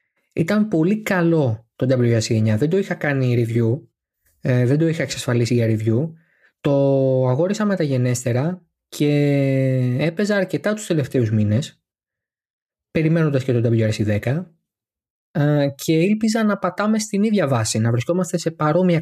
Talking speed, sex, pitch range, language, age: 135 wpm, male, 130-180 Hz, Greek, 20-39